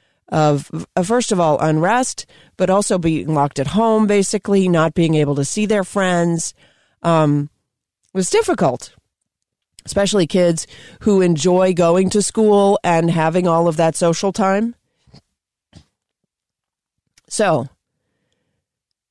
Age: 40-59